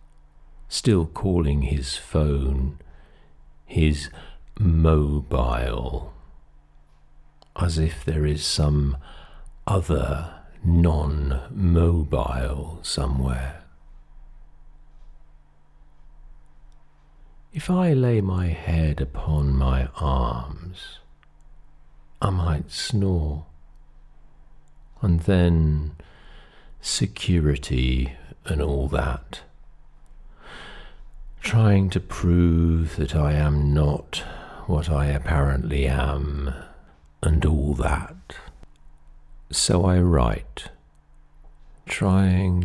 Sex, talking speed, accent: male, 70 wpm, British